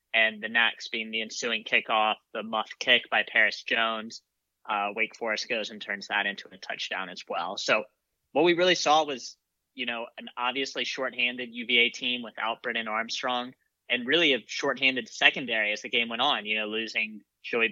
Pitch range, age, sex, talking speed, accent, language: 110-125 Hz, 20-39, male, 185 wpm, American, English